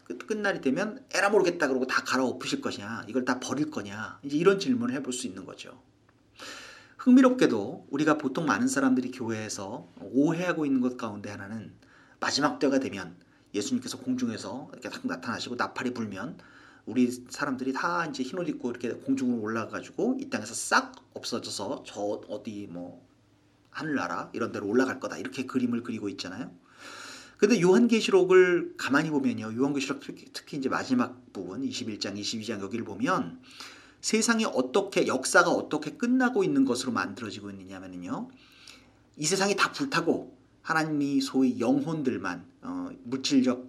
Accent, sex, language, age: native, male, Korean, 40-59